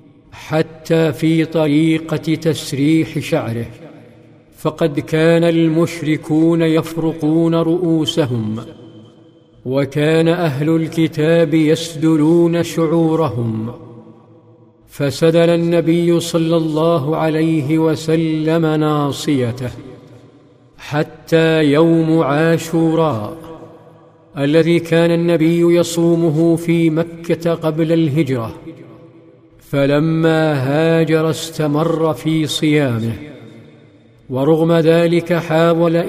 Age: 50-69